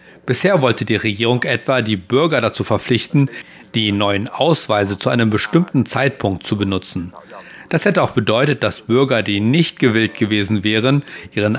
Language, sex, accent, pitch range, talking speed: German, male, German, 105-135 Hz, 155 wpm